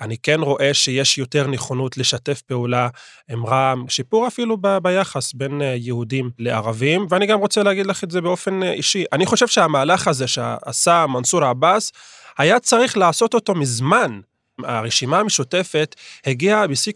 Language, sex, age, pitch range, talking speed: Hebrew, male, 30-49, 135-185 Hz, 145 wpm